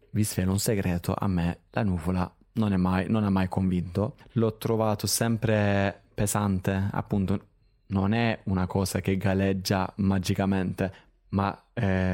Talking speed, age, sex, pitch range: 145 wpm, 20-39, male, 95-115 Hz